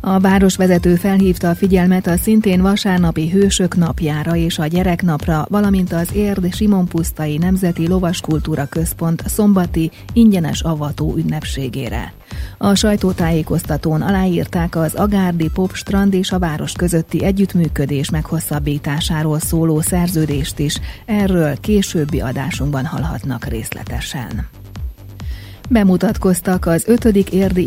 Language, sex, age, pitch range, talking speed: Hungarian, female, 30-49, 155-185 Hz, 105 wpm